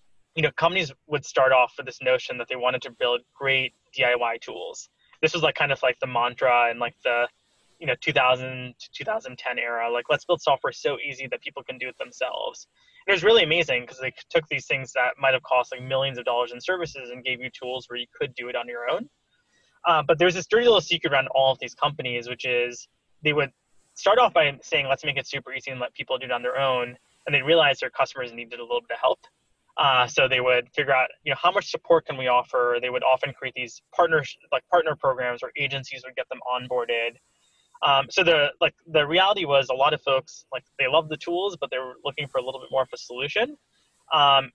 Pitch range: 125-165 Hz